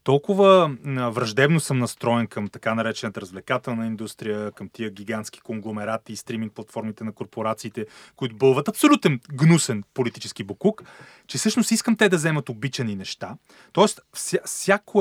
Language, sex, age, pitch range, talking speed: Bulgarian, male, 30-49, 125-170 Hz, 135 wpm